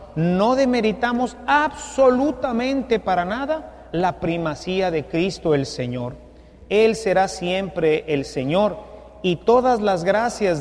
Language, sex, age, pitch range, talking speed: English, male, 40-59, 155-210 Hz, 115 wpm